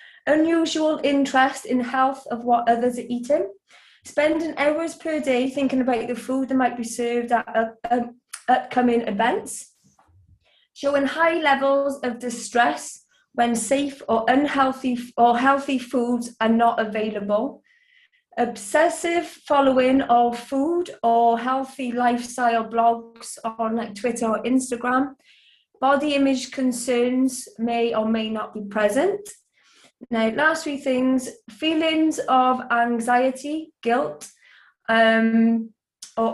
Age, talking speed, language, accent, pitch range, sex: 30-49, 115 wpm, English, British, 225-275 Hz, female